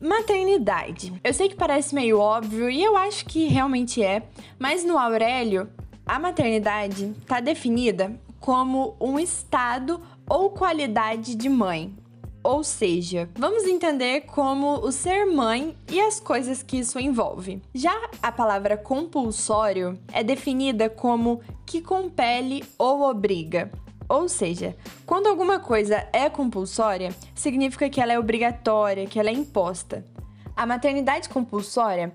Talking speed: 135 wpm